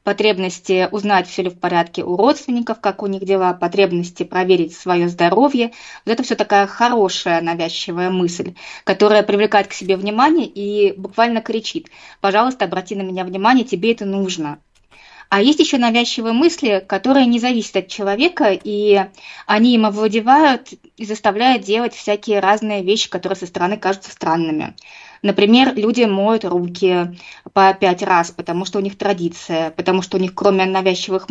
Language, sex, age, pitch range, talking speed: Russian, female, 20-39, 185-220 Hz, 155 wpm